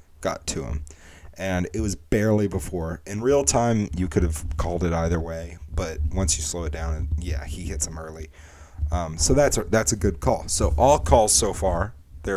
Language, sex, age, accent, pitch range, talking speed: English, male, 30-49, American, 80-100 Hz, 215 wpm